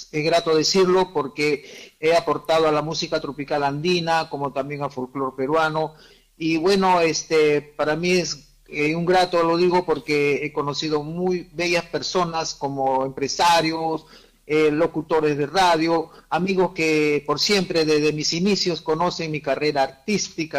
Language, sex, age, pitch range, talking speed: Spanish, male, 50-69, 150-190 Hz, 145 wpm